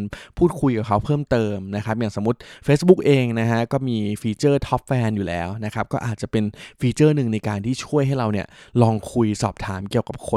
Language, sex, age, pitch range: Thai, male, 20-39, 105-130 Hz